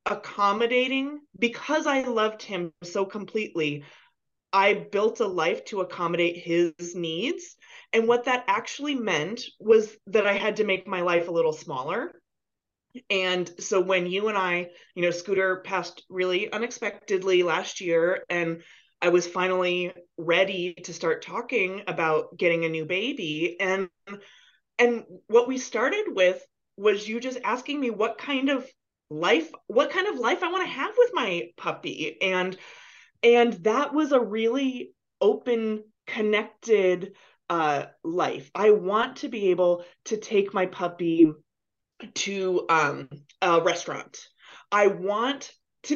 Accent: American